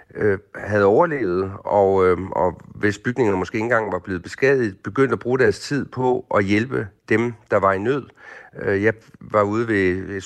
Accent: native